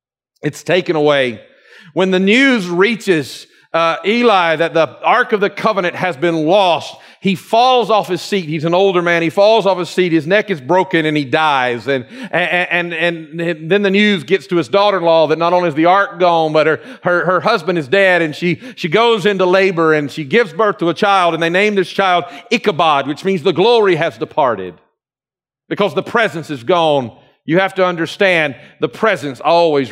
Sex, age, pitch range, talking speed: male, 50-69, 160-205 Hz, 205 wpm